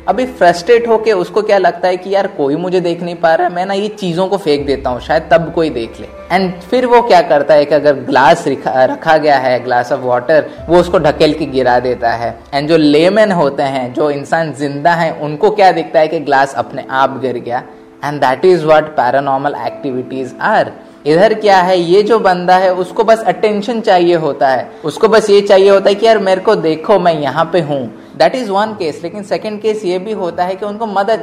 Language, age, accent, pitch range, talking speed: Hindi, 20-39, native, 145-190 Hz, 220 wpm